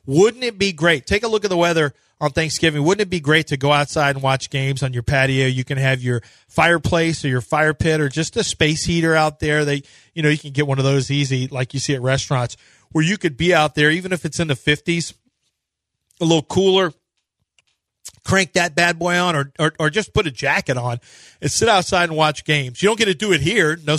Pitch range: 140-165 Hz